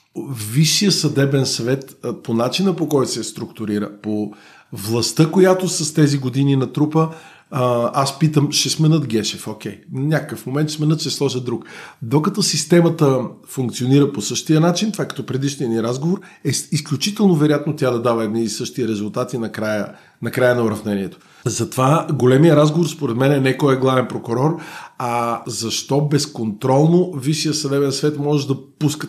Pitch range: 120-155 Hz